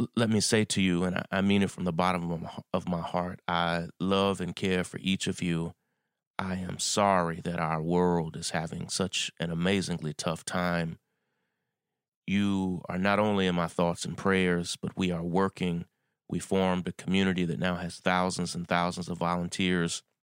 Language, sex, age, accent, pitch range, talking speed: English, male, 30-49, American, 85-100 Hz, 180 wpm